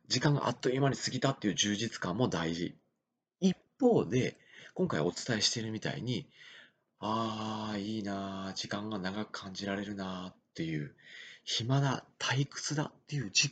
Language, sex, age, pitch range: Japanese, male, 30-49, 100-135 Hz